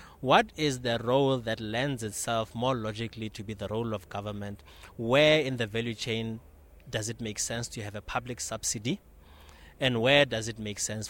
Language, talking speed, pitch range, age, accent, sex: English, 190 wpm, 105-125 Hz, 30-49, South African, male